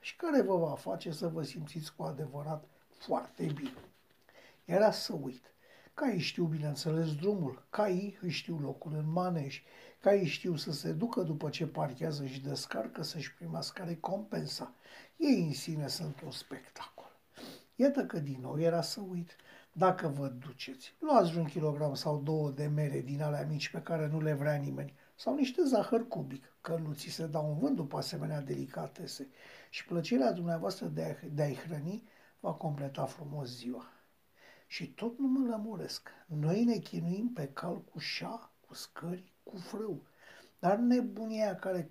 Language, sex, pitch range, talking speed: Romanian, male, 145-190 Hz, 165 wpm